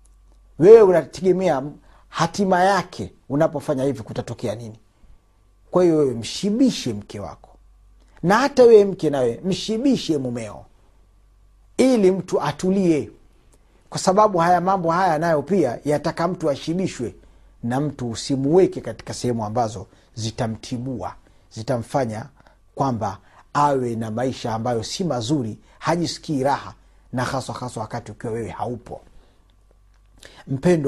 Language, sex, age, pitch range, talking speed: Swahili, male, 40-59, 100-145 Hz, 115 wpm